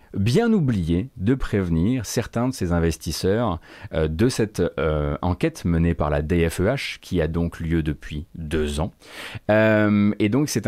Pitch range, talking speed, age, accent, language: 85-115 Hz, 155 wpm, 30-49, French, French